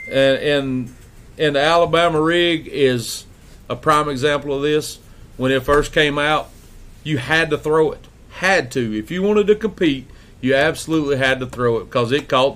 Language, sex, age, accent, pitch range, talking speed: English, male, 40-59, American, 120-150 Hz, 180 wpm